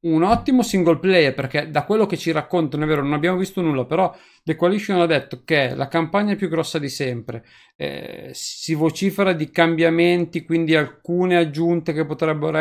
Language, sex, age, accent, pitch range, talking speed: Italian, male, 40-59, native, 145-180 Hz, 185 wpm